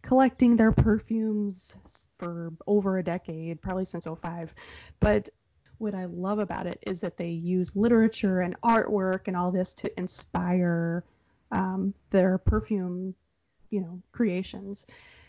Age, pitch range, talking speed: 20-39, 180-220 Hz, 135 wpm